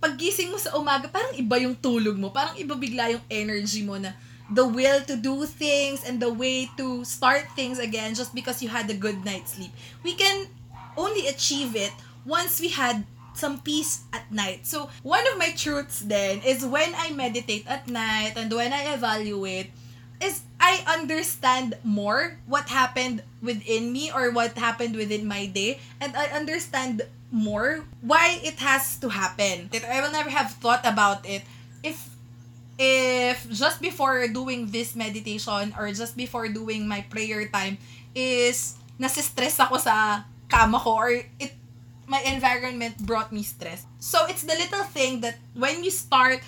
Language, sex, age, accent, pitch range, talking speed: Filipino, female, 20-39, native, 210-275 Hz, 170 wpm